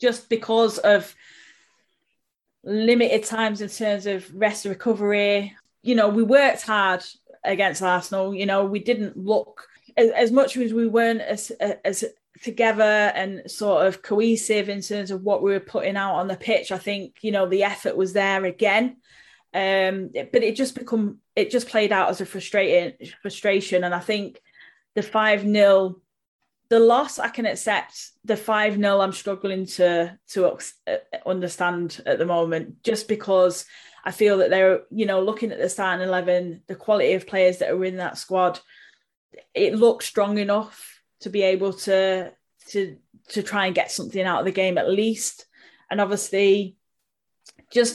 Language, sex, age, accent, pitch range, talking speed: English, female, 10-29, British, 190-220 Hz, 170 wpm